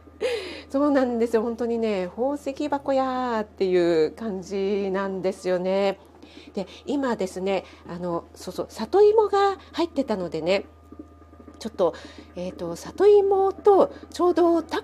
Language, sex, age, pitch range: Japanese, female, 40-59, 185-295 Hz